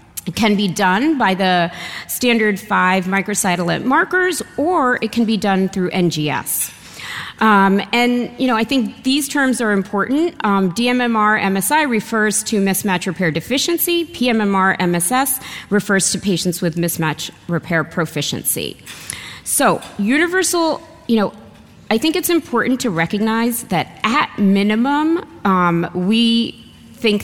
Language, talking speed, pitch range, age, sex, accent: English, 130 wpm, 180-245 Hz, 30-49, female, American